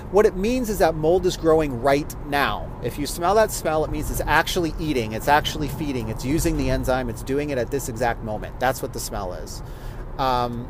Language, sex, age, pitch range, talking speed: English, male, 30-49, 120-155 Hz, 225 wpm